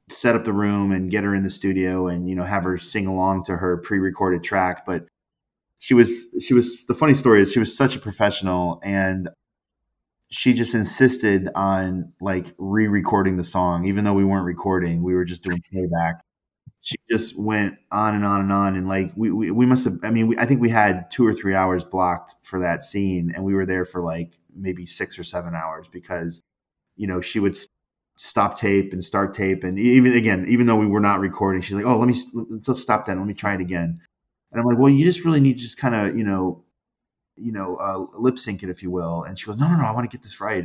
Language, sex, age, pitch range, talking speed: English, male, 20-39, 90-110 Hz, 245 wpm